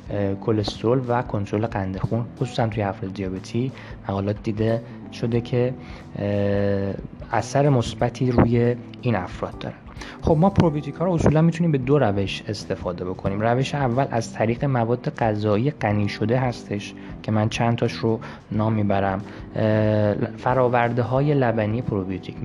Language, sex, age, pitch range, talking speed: Persian, male, 20-39, 100-125 Hz, 135 wpm